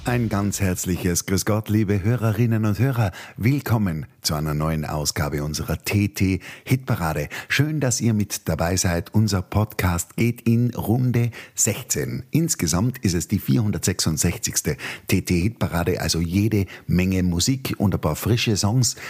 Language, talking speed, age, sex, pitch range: German, 135 wpm, 50-69, male, 85-115 Hz